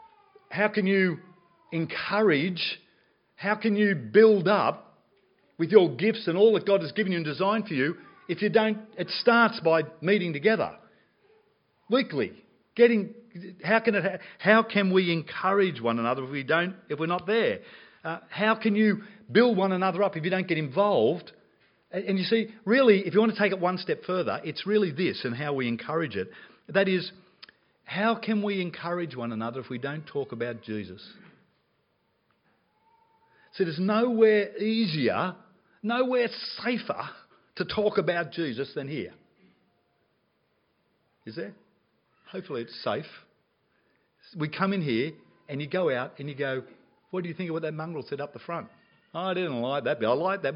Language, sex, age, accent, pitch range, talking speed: English, male, 50-69, Australian, 160-215 Hz, 175 wpm